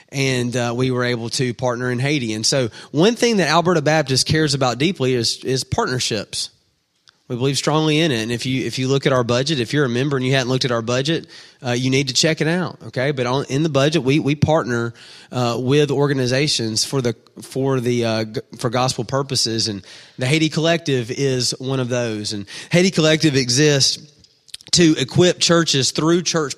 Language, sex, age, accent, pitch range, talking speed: English, male, 30-49, American, 120-150 Hz, 205 wpm